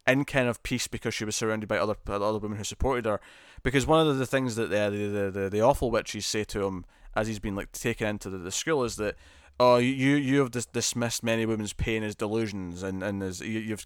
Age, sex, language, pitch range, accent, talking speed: 20-39, male, English, 105-125 Hz, British, 245 wpm